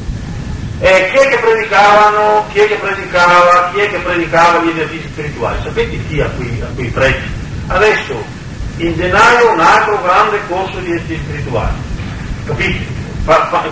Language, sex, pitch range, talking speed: Italian, male, 145-195 Hz, 150 wpm